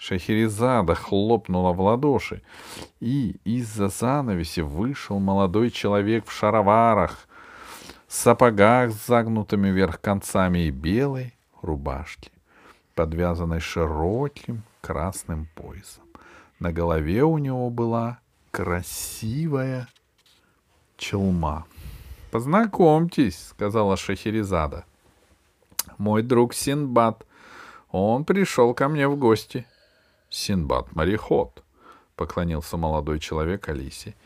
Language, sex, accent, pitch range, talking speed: Russian, male, native, 90-125 Hz, 85 wpm